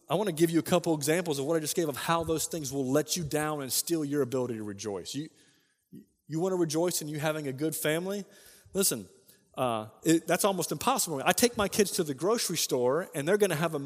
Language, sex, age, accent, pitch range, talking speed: English, male, 30-49, American, 160-230 Hz, 250 wpm